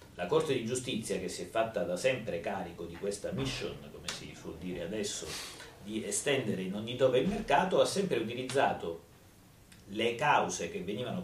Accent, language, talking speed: native, Italian, 175 wpm